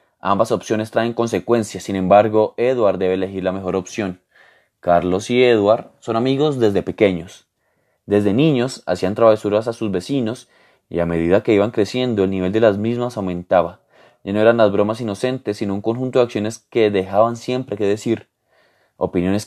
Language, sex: Spanish, male